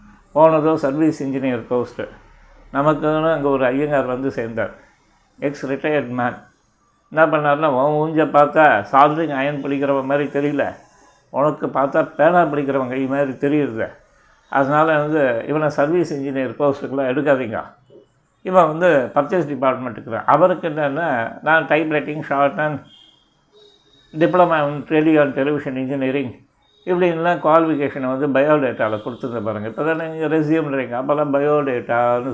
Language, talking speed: Tamil, 120 wpm